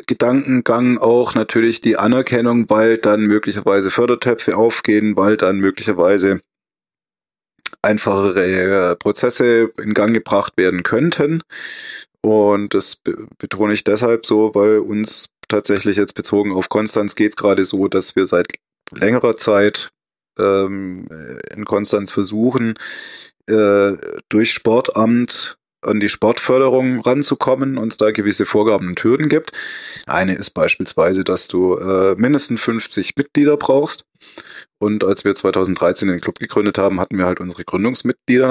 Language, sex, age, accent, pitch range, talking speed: German, male, 20-39, German, 100-120 Hz, 130 wpm